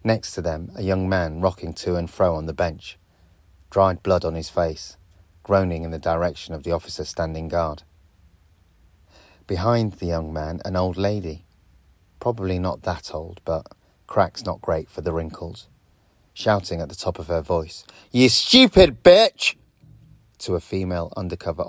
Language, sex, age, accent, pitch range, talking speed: English, male, 30-49, British, 85-110 Hz, 165 wpm